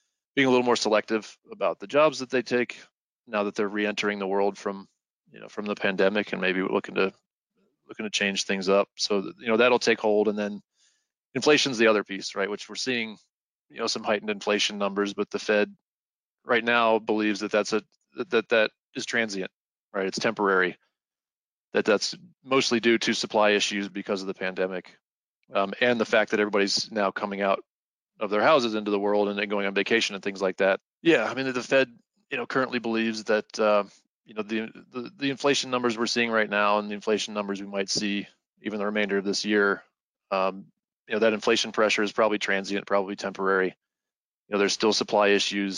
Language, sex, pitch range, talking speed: English, male, 100-115 Hz, 210 wpm